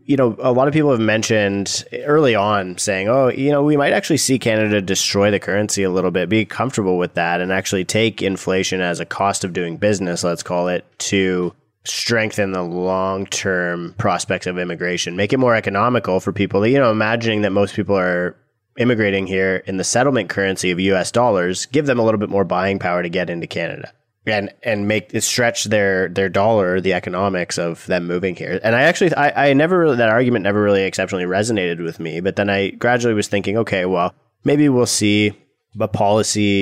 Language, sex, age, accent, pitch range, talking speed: English, male, 20-39, American, 95-110 Hz, 205 wpm